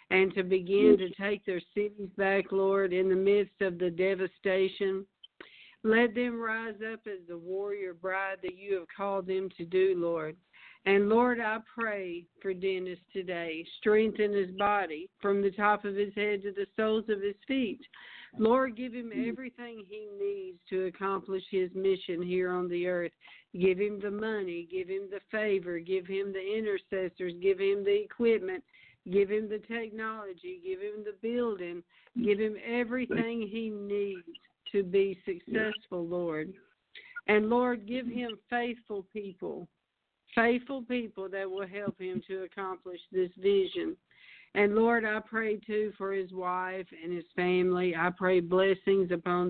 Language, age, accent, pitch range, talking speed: English, 60-79, American, 185-225 Hz, 160 wpm